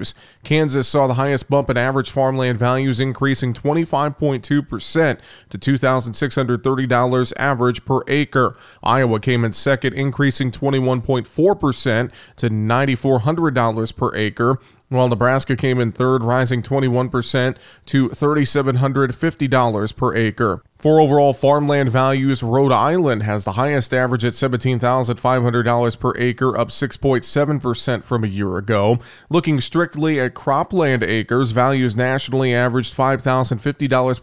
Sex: male